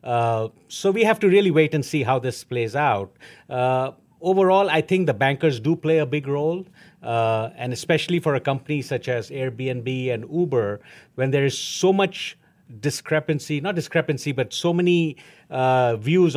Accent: Indian